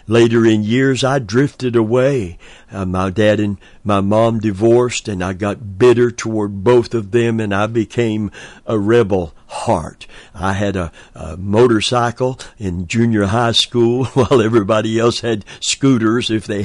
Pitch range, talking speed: 100-120 Hz, 155 wpm